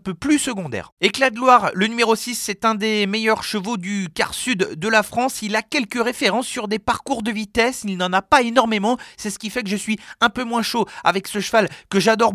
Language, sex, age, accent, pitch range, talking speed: French, male, 40-59, French, 190-230 Hz, 245 wpm